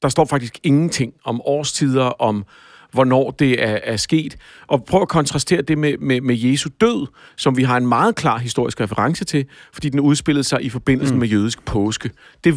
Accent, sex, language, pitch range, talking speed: native, male, Danish, 120-145 Hz, 195 wpm